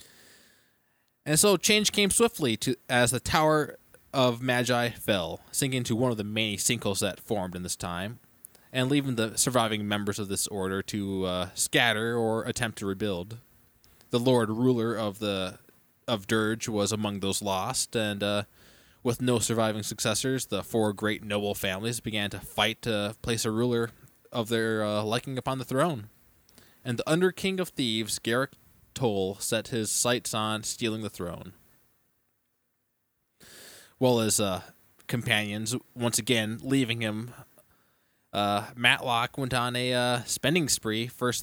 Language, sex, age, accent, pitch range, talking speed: English, male, 20-39, American, 105-130 Hz, 155 wpm